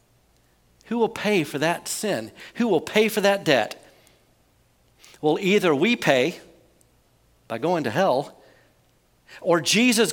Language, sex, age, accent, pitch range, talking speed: English, male, 50-69, American, 160-220 Hz, 130 wpm